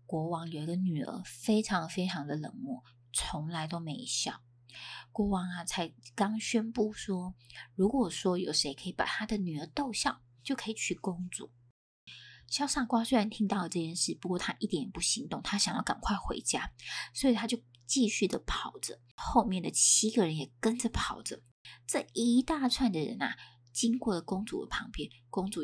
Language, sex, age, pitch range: Chinese, female, 20-39, 145-230 Hz